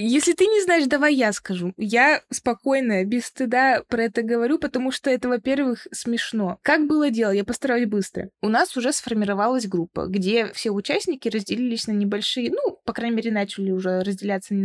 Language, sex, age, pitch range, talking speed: Russian, female, 20-39, 200-260 Hz, 175 wpm